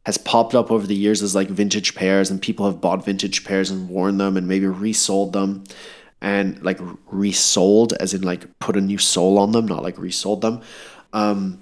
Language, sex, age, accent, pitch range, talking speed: English, male, 20-39, Canadian, 95-110 Hz, 205 wpm